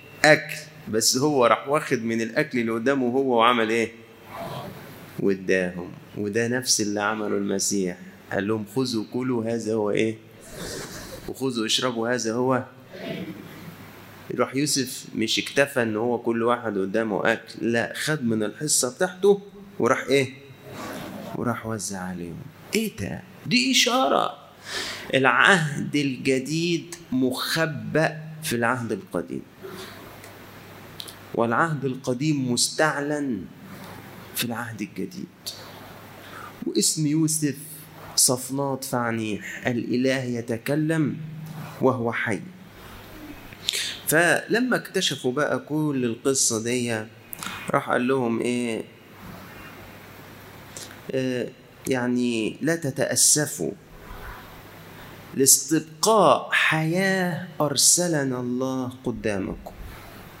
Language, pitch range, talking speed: Arabic, 115-150 Hz, 90 wpm